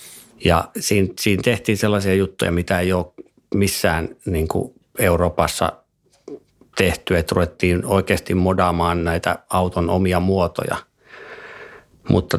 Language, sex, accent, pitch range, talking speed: Finnish, male, native, 90-105 Hz, 110 wpm